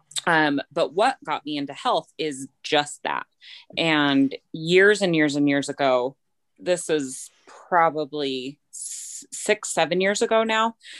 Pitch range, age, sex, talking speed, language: 140-165 Hz, 20-39, female, 135 wpm, English